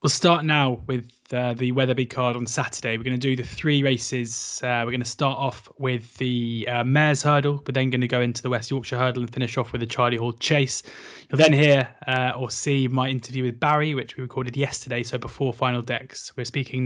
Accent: British